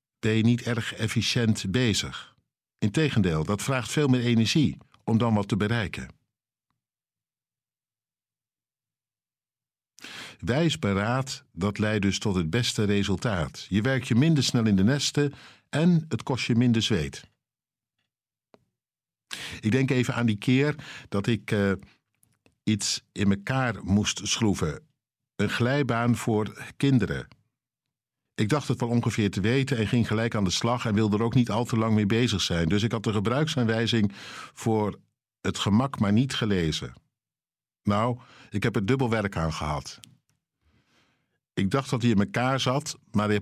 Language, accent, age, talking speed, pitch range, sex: Dutch, Dutch, 60-79, 150 wpm, 105-130 Hz, male